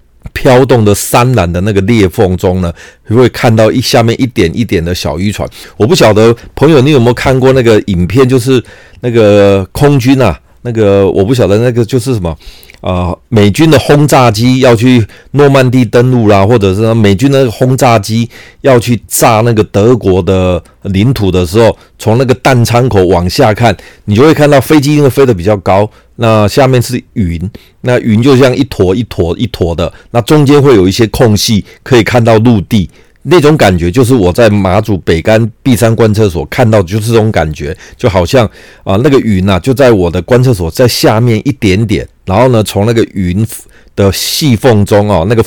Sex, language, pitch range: male, Chinese, 95-125 Hz